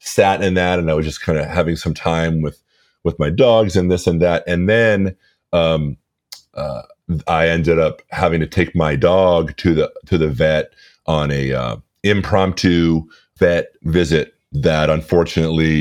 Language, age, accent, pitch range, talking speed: English, 30-49, American, 75-90 Hz, 170 wpm